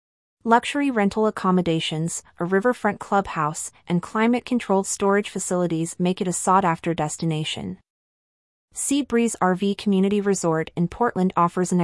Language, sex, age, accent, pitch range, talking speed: English, female, 30-49, American, 170-210 Hz, 120 wpm